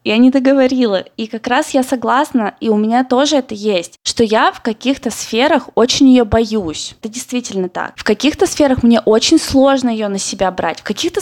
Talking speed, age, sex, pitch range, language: 200 wpm, 20-39, female, 210-270 Hz, Russian